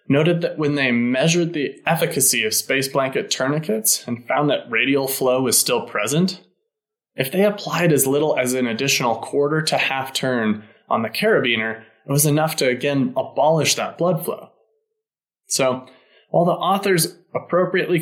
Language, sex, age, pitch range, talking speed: English, male, 20-39, 130-180 Hz, 160 wpm